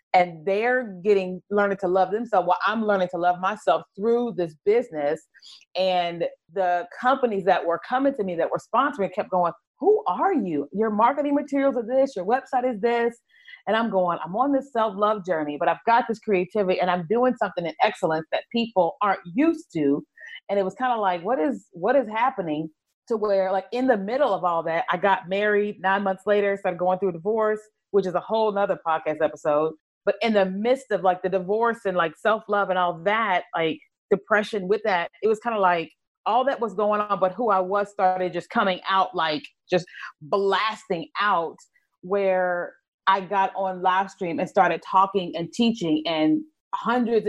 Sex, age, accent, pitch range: female, 30-49, American, 180-220 Hz